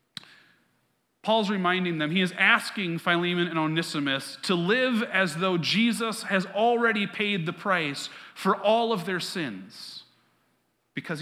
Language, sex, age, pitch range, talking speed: English, male, 30-49, 160-215 Hz, 135 wpm